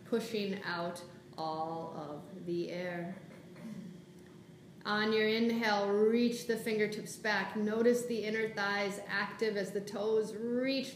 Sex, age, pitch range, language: female, 30-49, 185-225 Hz, English